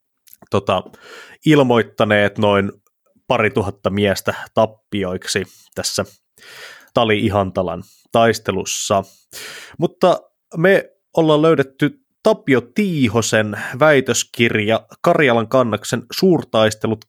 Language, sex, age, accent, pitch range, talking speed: Finnish, male, 20-39, native, 105-140 Hz, 70 wpm